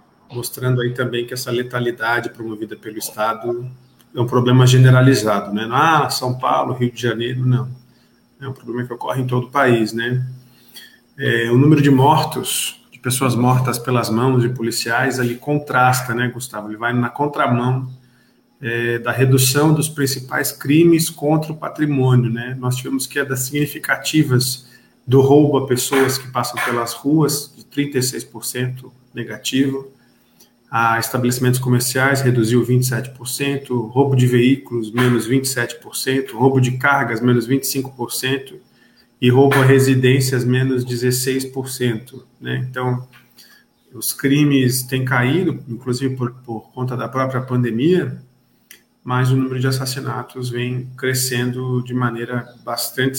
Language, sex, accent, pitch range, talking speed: Portuguese, male, Brazilian, 120-130 Hz, 135 wpm